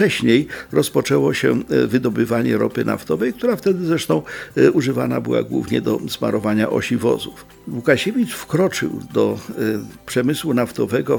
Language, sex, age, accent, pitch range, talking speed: Polish, male, 50-69, native, 115-155 Hz, 115 wpm